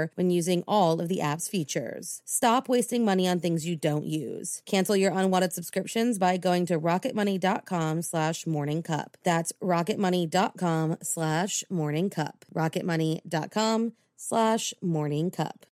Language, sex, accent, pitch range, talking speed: English, female, American, 180-230 Hz, 120 wpm